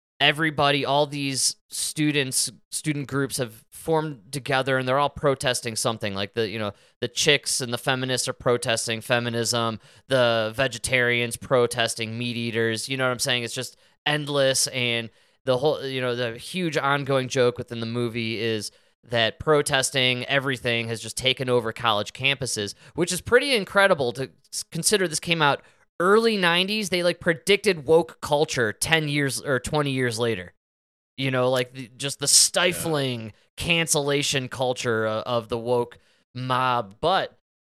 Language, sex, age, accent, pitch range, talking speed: English, male, 20-39, American, 120-155 Hz, 155 wpm